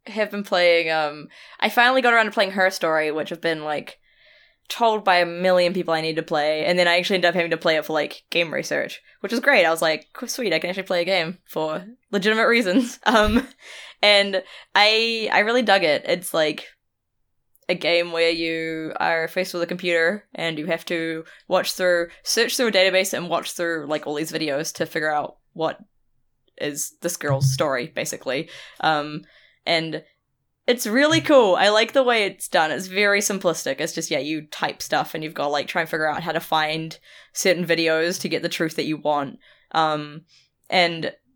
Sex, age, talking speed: female, 10-29, 205 wpm